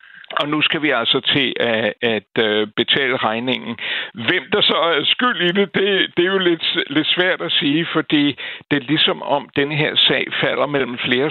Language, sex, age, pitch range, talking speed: Danish, male, 60-79, 115-145 Hz, 180 wpm